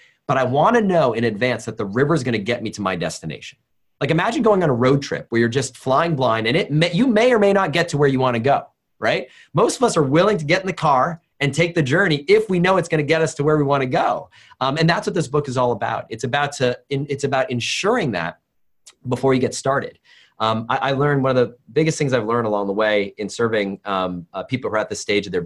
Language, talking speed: English, 270 wpm